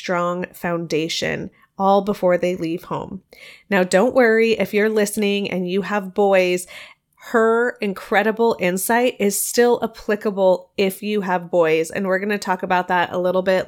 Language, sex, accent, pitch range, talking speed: English, female, American, 180-215 Hz, 160 wpm